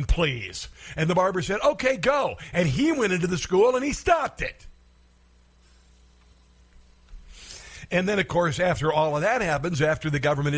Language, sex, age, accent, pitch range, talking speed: English, male, 50-69, American, 135-200 Hz, 165 wpm